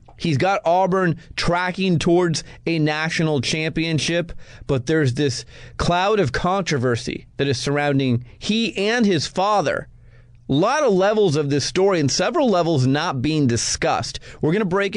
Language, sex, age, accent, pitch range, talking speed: English, male, 30-49, American, 125-165 Hz, 150 wpm